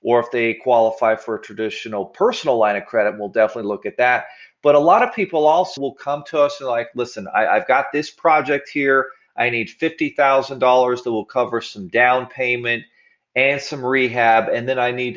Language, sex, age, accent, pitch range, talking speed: English, male, 40-59, American, 110-145 Hz, 200 wpm